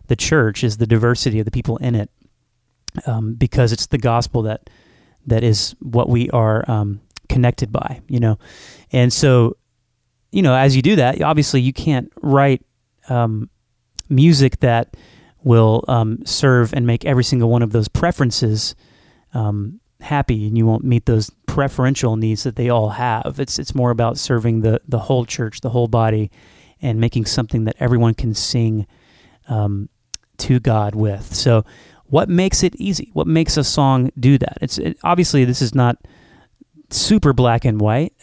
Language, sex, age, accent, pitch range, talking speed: English, male, 30-49, American, 110-130 Hz, 170 wpm